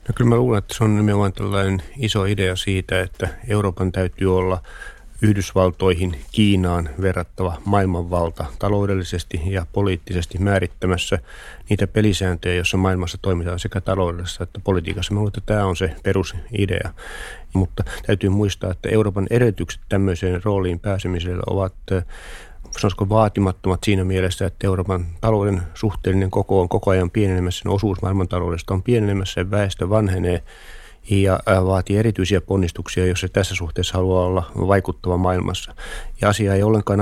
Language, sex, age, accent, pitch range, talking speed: Finnish, male, 30-49, native, 90-100 Hz, 140 wpm